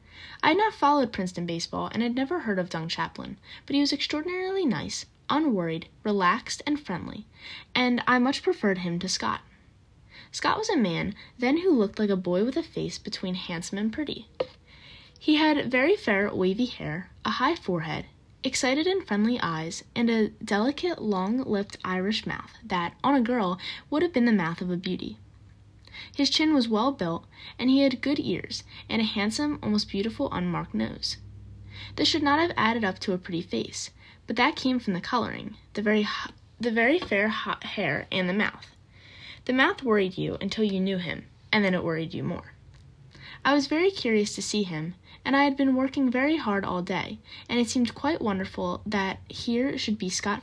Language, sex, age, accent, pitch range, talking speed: English, female, 10-29, American, 185-270 Hz, 190 wpm